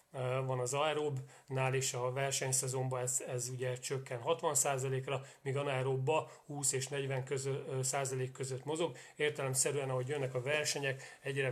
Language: Hungarian